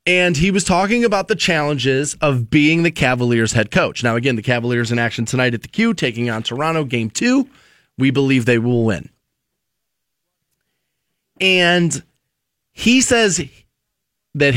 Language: English